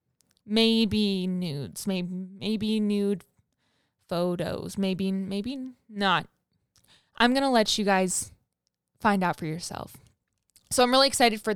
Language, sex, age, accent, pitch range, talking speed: English, female, 20-39, American, 200-240 Hz, 120 wpm